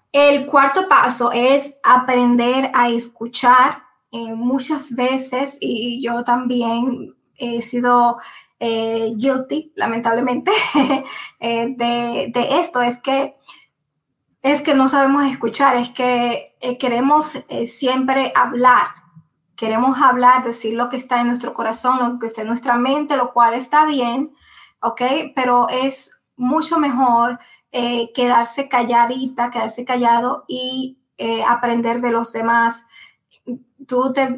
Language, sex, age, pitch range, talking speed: Spanish, female, 10-29, 235-270 Hz, 125 wpm